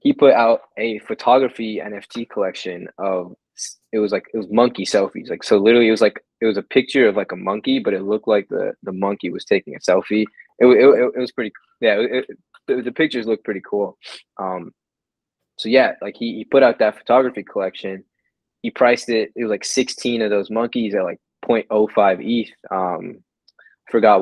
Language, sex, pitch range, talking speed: English, male, 105-125 Hz, 205 wpm